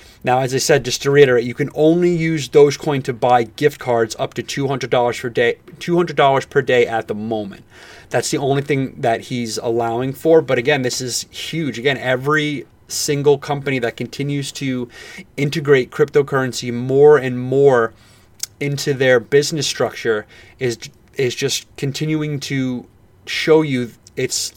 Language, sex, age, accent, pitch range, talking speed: English, male, 30-49, American, 125-150 Hz, 155 wpm